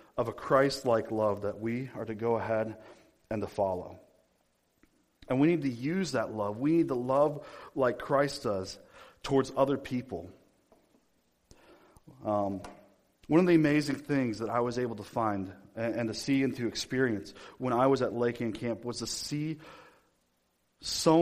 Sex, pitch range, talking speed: male, 110-135 Hz, 165 wpm